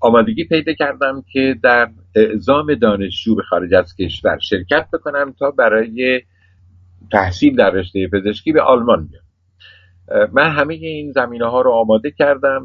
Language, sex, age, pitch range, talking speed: Persian, male, 50-69, 90-125 Hz, 145 wpm